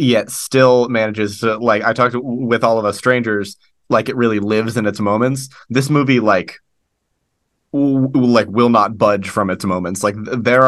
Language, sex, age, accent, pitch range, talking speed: English, male, 30-49, American, 105-130 Hz, 175 wpm